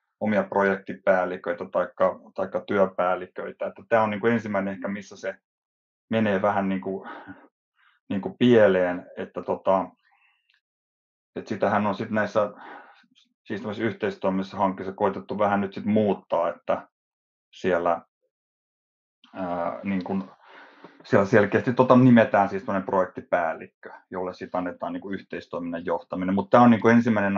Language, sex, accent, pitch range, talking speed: Finnish, male, native, 95-115 Hz, 120 wpm